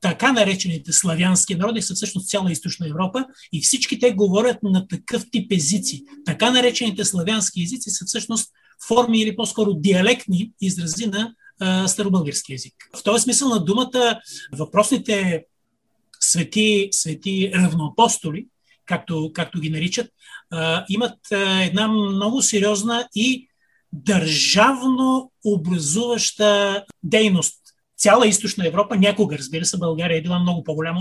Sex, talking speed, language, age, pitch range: male, 120 wpm, Bulgarian, 30-49, 180-225 Hz